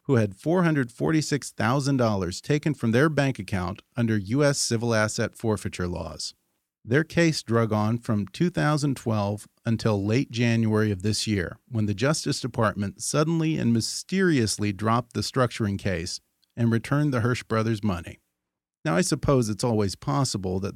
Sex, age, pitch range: male, 40-59, 105-140 Hz